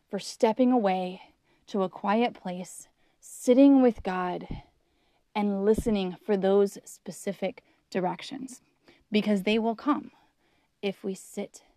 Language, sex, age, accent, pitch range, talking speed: English, female, 30-49, American, 195-240 Hz, 115 wpm